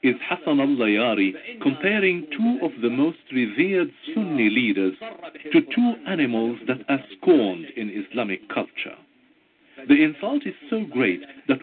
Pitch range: 255-320 Hz